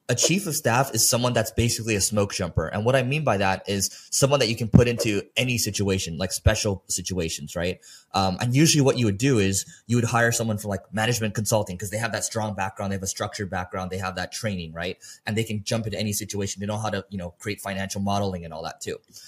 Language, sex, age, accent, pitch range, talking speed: English, male, 20-39, American, 95-115 Hz, 255 wpm